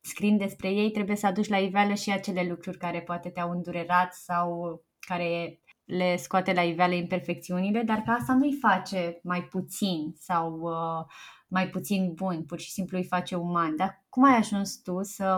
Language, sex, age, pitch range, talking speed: Romanian, female, 20-39, 180-215 Hz, 180 wpm